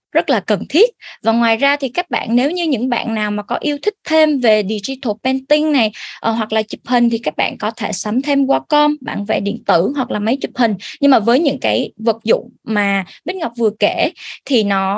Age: 20-39